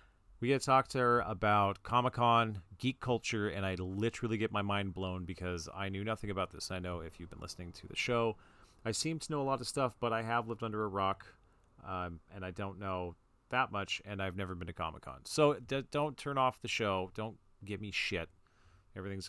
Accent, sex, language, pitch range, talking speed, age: American, male, English, 90-115 Hz, 220 wpm, 30-49